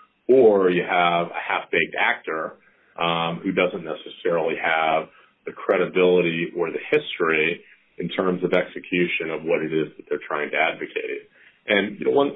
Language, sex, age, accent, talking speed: English, male, 40-59, American, 150 wpm